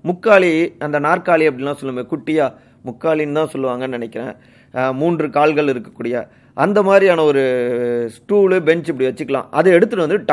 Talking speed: 135 wpm